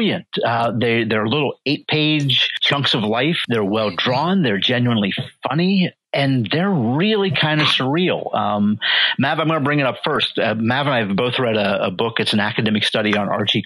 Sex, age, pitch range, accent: male, 50-69, 110-145 Hz, American